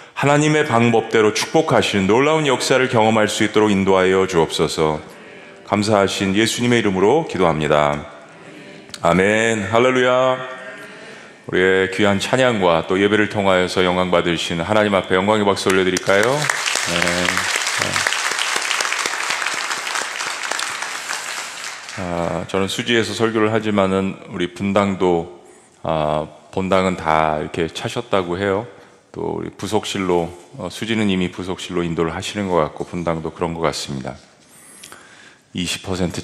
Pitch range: 80-105 Hz